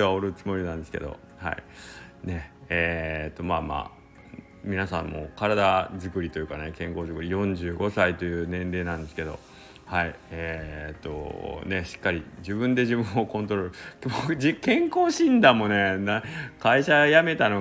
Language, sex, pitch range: Japanese, male, 85-115 Hz